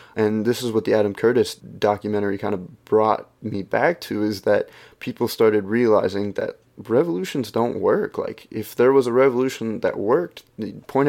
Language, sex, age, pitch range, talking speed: English, male, 20-39, 100-115 Hz, 175 wpm